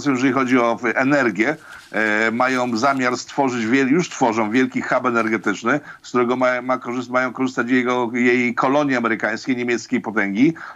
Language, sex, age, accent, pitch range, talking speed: Polish, male, 50-69, native, 125-150 Hz, 115 wpm